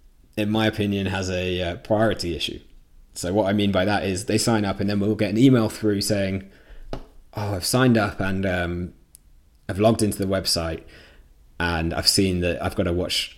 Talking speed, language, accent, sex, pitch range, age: 200 wpm, English, British, male, 80-95 Hz, 20-39